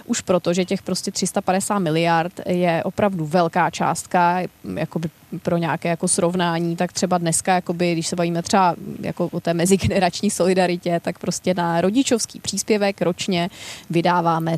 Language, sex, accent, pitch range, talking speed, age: Czech, female, native, 165-195 Hz, 145 wpm, 20-39